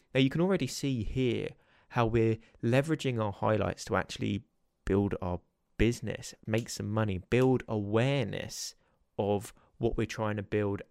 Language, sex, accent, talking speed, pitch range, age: English, male, British, 150 wpm, 100-120 Hz, 20-39